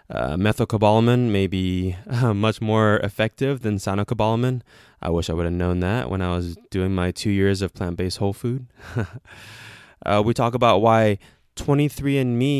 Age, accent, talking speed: 20-39, American, 160 wpm